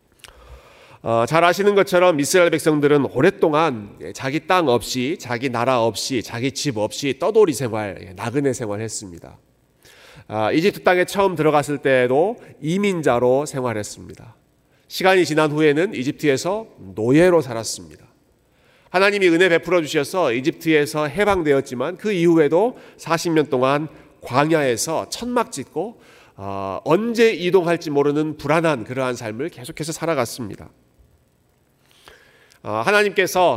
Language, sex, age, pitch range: Korean, male, 40-59, 125-180 Hz